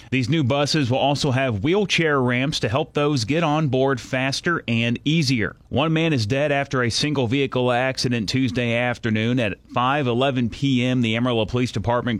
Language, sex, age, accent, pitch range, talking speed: English, male, 30-49, American, 115-140 Hz, 165 wpm